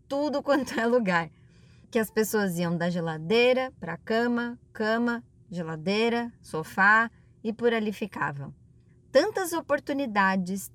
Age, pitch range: 20-39, 195-255 Hz